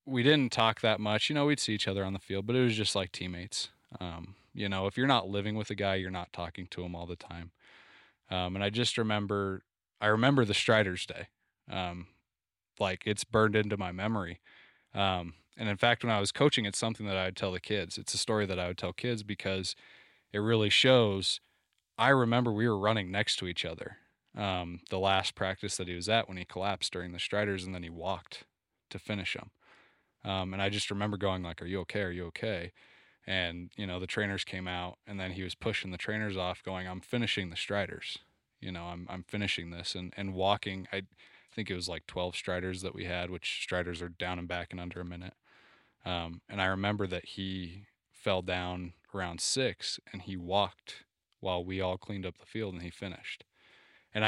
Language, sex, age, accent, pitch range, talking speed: English, male, 20-39, American, 90-105 Hz, 220 wpm